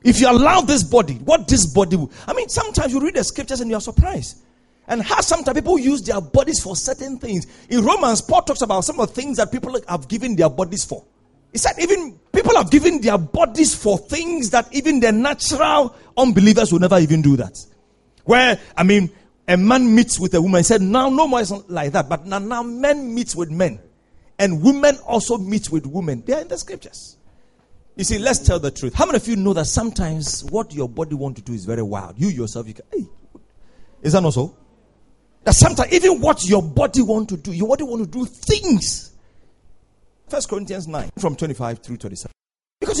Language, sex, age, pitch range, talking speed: English, male, 40-59, 150-250 Hz, 215 wpm